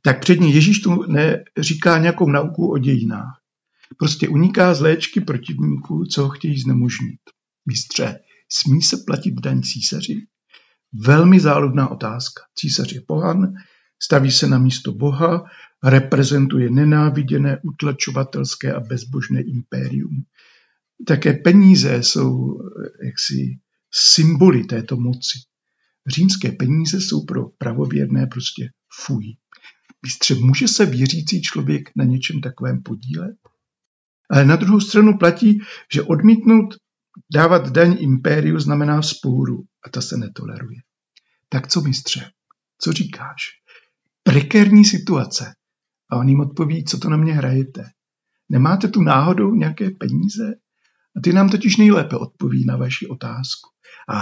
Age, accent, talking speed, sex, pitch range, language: 60-79, native, 125 wpm, male, 130-180 Hz, Czech